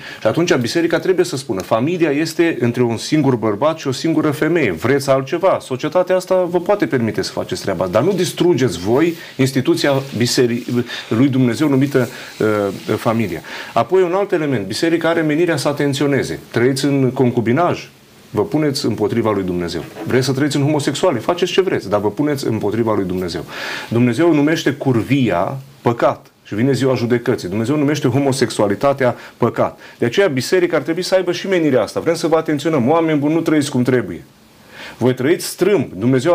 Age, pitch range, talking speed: 40-59, 125-165 Hz, 170 wpm